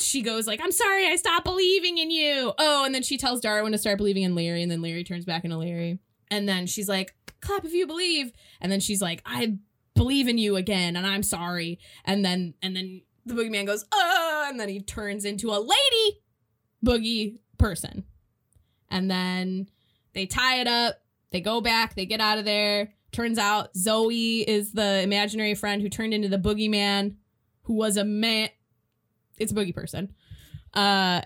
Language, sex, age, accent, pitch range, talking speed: English, female, 10-29, American, 190-240 Hz, 195 wpm